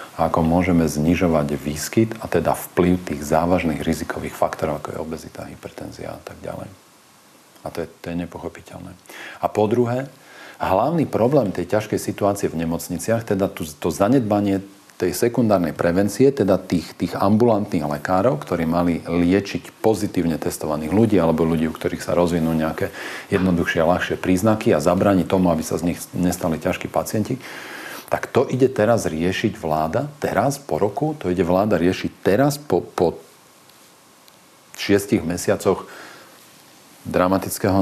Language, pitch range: Slovak, 85-100 Hz